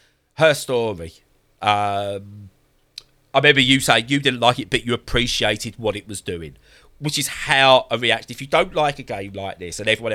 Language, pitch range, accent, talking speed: English, 105-140 Hz, British, 195 wpm